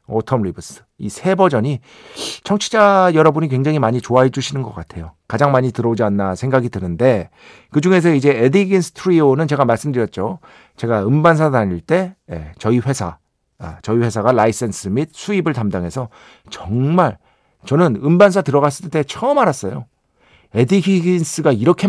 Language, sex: Korean, male